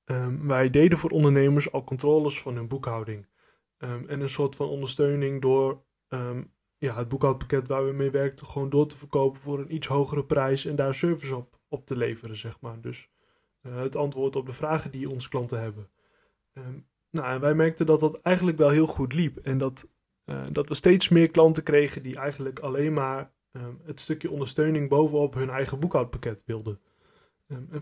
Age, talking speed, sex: 20-39, 190 wpm, male